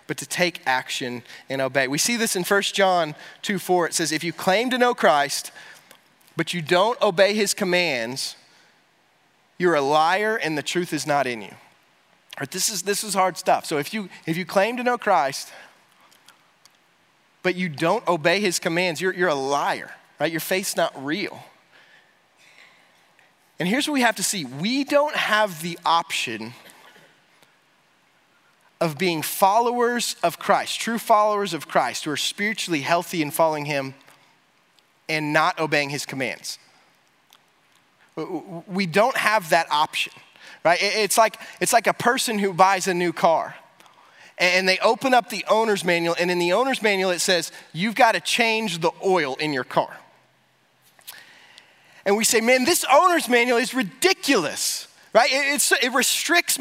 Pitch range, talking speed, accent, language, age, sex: 165-220 Hz, 165 wpm, American, English, 30-49, male